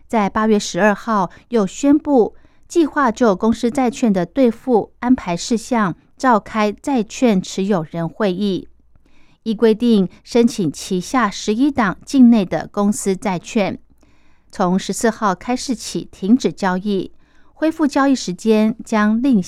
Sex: female